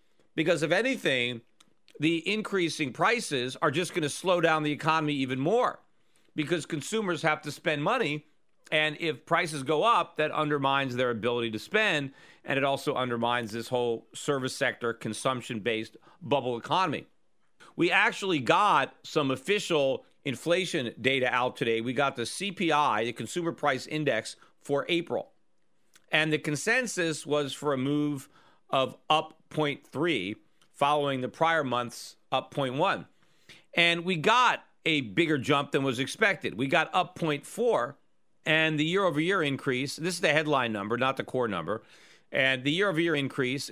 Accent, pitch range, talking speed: American, 130-160 Hz, 150 wpm